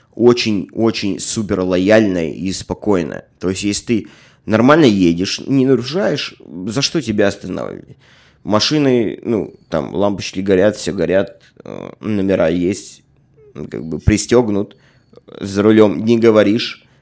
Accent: native